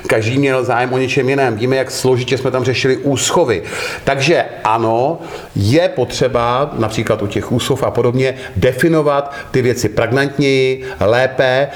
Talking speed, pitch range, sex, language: 145 wpm, 110-135 Hz, male, Czech